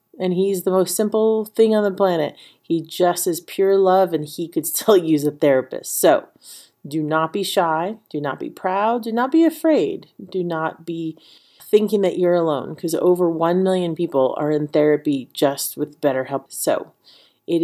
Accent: American